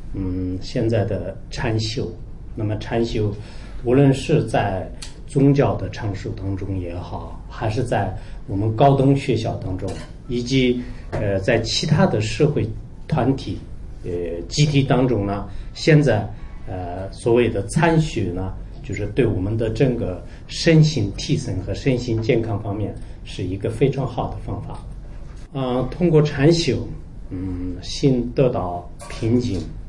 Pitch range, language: 95-130 Hz, English